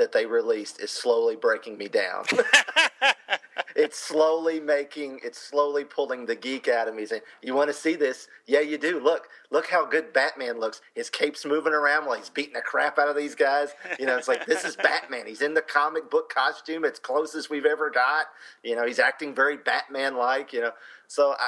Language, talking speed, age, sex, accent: English, 210 wpm, 40-59, male, American